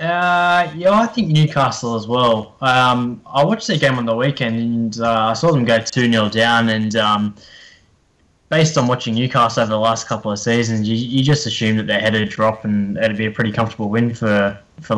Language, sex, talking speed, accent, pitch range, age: English, male, 210 wpm, Australian, 110-125 Hz, 10-29